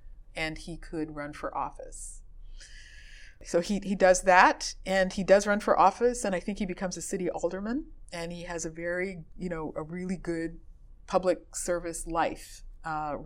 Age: 40-59